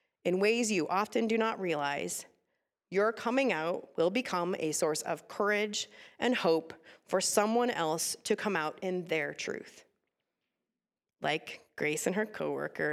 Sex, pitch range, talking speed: female, 190-275 Hz, 150 wpm